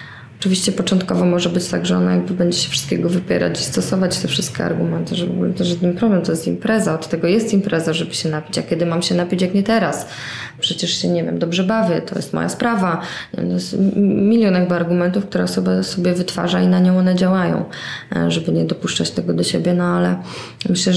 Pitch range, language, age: 150-195 Hz, Polish, 20-39